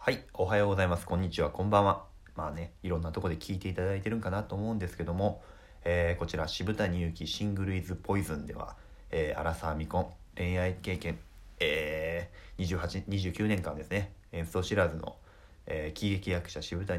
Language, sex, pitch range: Japanese, male, 80-95 Hz